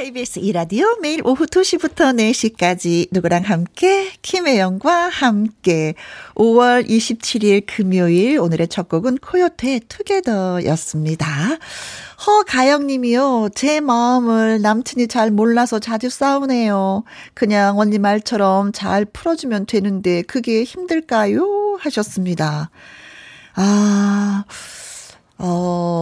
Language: Korean